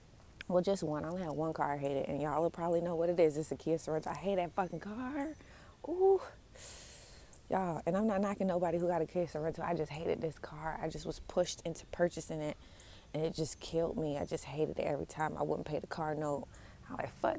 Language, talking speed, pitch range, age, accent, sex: English, 245 wpm, 150-190 Hz, 20-39, American, female